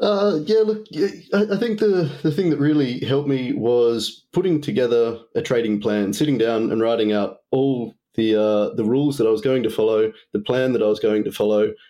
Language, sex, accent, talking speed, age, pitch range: English, male, Australian, 210 wpm, 20-39, 105-135 Hz